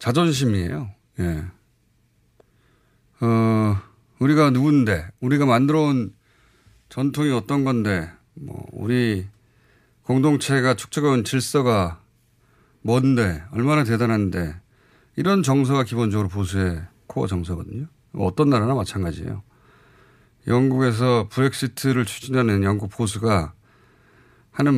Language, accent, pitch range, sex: Korean, native, 105-140 Hz, male